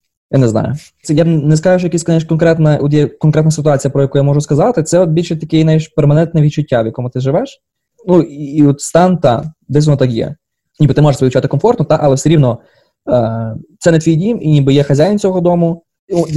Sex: male